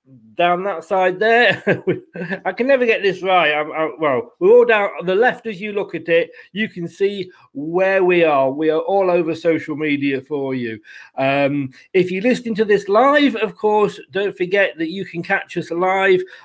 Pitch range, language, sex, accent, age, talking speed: 160-200 Hz, English, male, British, 40-59, 200 wpm